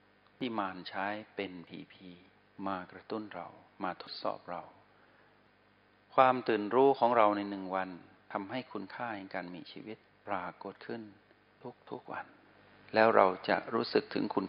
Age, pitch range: 60-79, 95-110 Hz